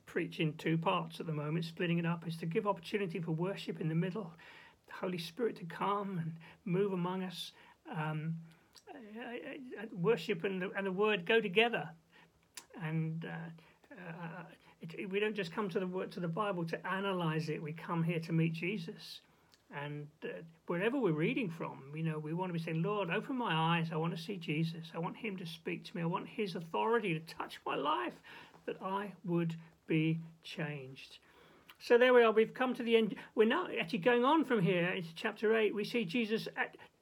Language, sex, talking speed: English, male, 205 wpm